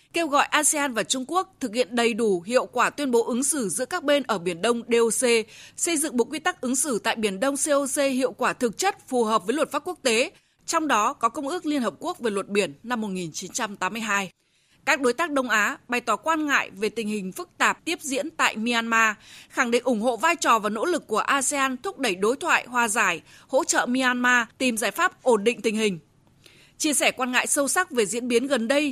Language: Vietnamese